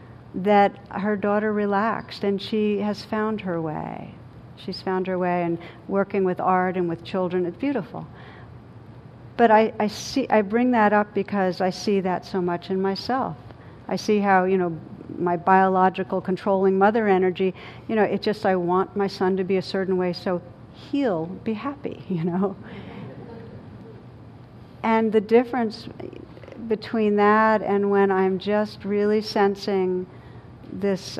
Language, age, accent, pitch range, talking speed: English, 60-79, American, 175-210 Hz, 155 wpm